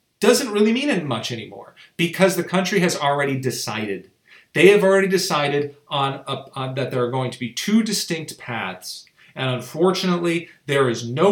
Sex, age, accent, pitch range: male, 40-59, American, 120-170 Hz